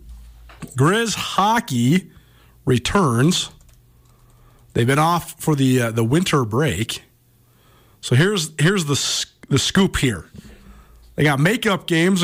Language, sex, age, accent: English, male, 40-59, American